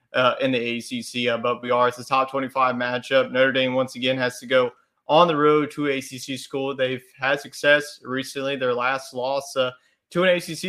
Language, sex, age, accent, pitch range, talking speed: English, male, 30-49, American, 125-140 Hz, 210 wpm